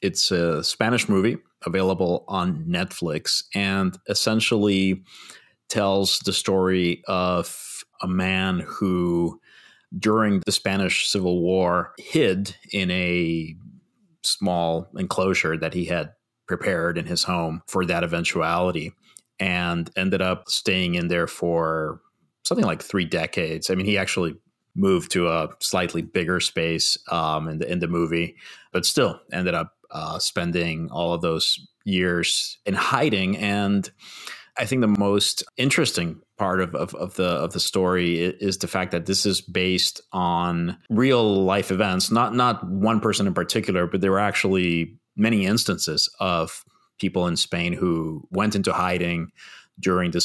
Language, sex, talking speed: English, male, 145 wpm